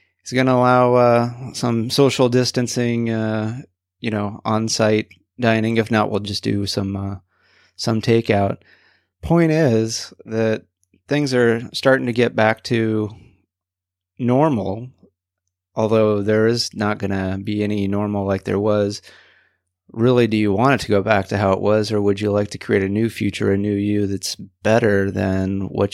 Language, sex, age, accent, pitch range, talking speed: English, male, 30-49, American, 100-115 Hz, 170 wpm